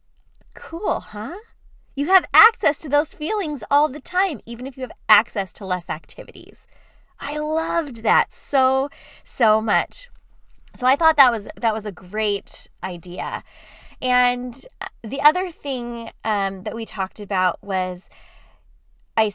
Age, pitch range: 20-39, 205-280 Hz